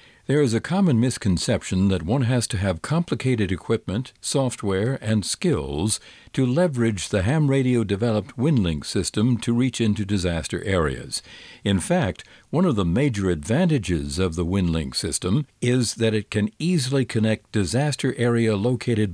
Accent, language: American, English